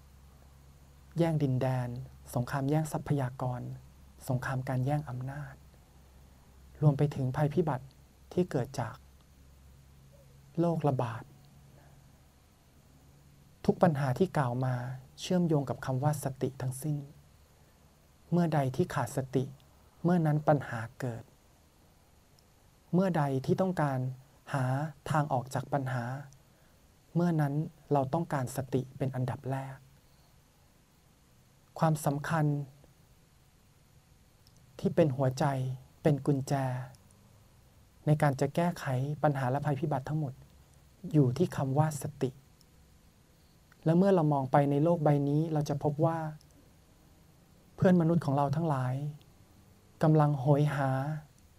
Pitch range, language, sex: 120-150 Hz, Thai, male